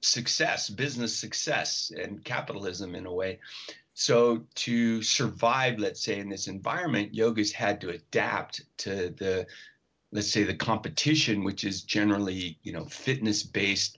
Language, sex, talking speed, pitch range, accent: English, male, 135 wpm, 105-125 Hz, American